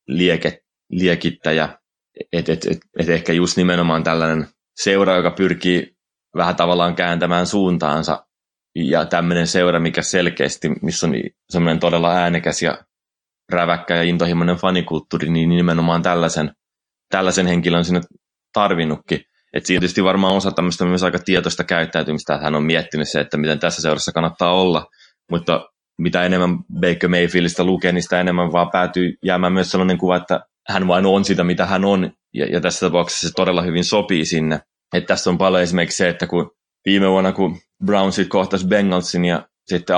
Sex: male